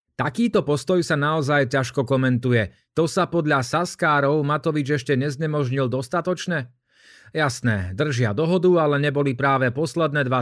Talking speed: 125 wpm